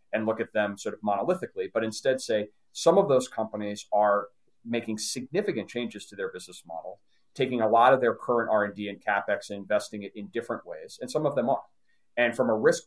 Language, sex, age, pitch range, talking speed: English, male, 30-49, 100-125 Hz, 220 wpm